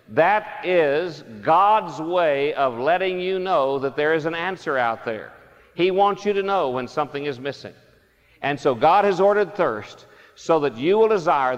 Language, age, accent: English, 50-69, American